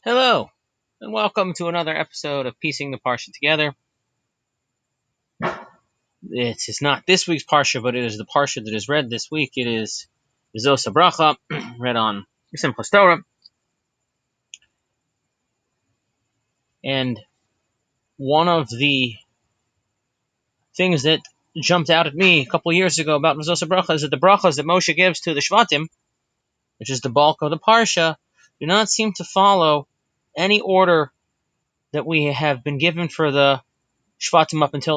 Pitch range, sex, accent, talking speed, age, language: 125-165 Hz, male, American, 150 wpm, 30-49, English